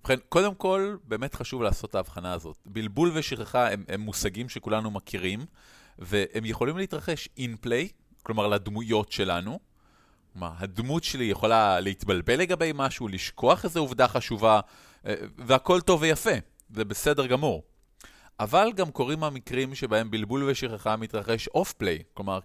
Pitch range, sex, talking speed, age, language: 100-135 Hz, male, 135 wpm, 30-49, Hebrew